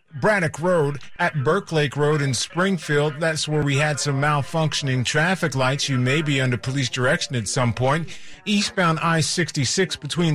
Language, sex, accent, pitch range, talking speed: English, male, American, 130-165 Hz, 160 wpm